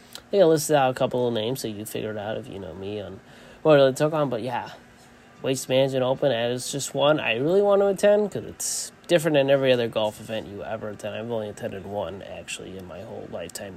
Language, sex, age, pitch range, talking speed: English, male, 20-39, 110-135 Hz, 230 wpm